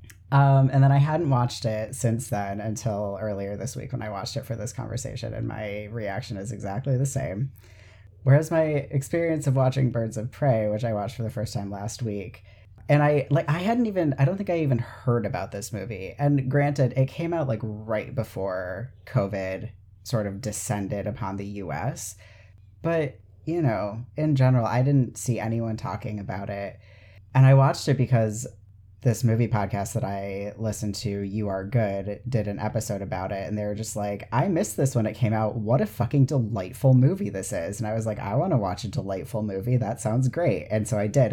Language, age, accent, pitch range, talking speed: English, 30-49, American, 100-135 Hz, 205 wpm